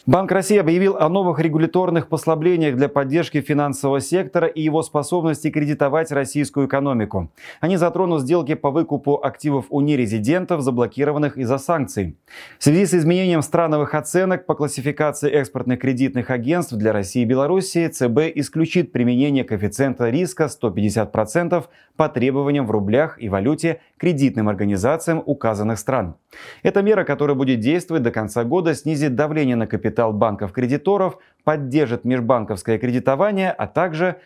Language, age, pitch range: Russian, 30-49, 125-160 Hz